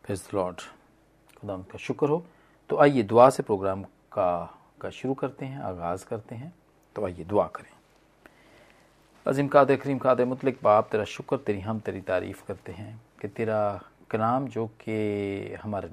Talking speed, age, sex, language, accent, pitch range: 160 wpm, 40-59, male, Hindi, native, 105-140 Hz